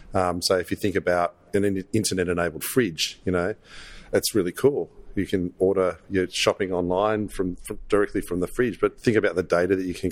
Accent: Australian